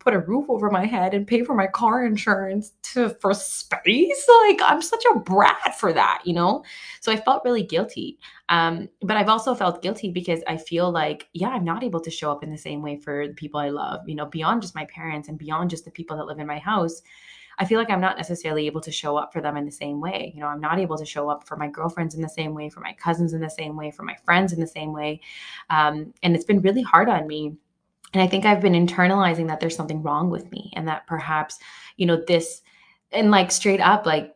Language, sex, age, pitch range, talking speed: English, female, 20-39, 155-195 Hz, 255 wpm